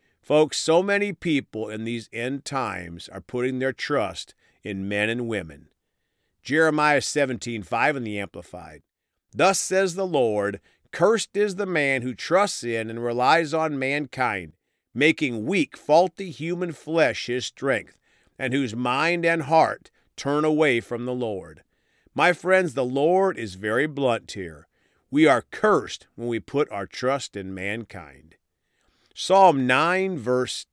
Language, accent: English, American